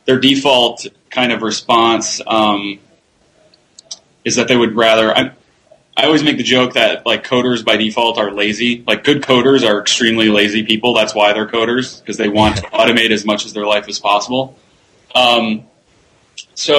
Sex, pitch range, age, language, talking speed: male, 110-125 Hz, 20-39, English, 175 wpm